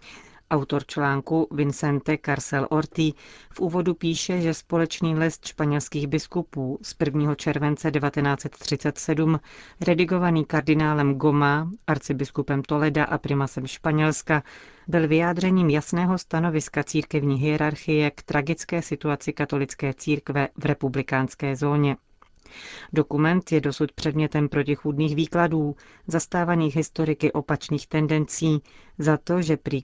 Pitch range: 145-160 Hz